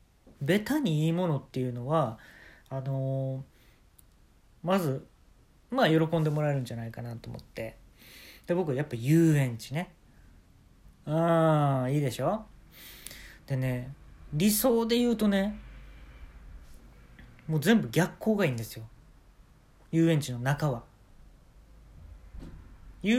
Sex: male